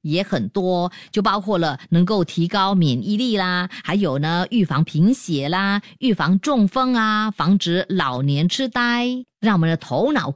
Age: 30-49